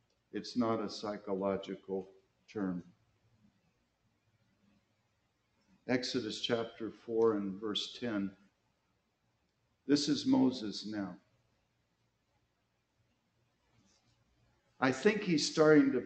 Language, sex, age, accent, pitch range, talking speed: English, male, 60-79, American, 105-135 Hz, 75 wpm